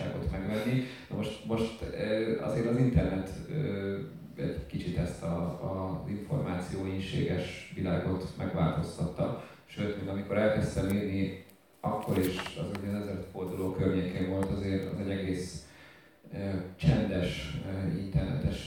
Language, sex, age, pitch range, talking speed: Hungarian, male, 30-49, 95-105 Hz, 105 wpm